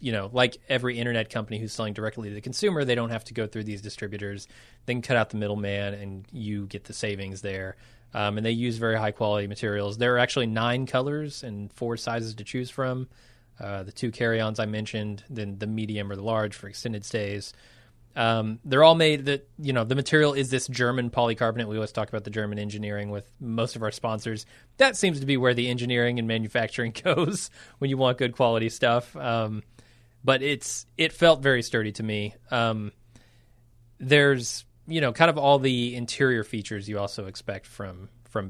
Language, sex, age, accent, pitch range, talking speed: English, male, 20-39, American, 105-125 Hz, 205 wpm